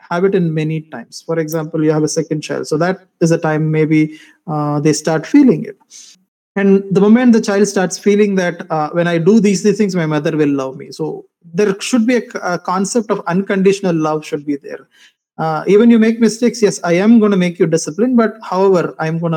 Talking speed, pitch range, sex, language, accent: 225 wpm, 155-205 Hz, male, English, Indian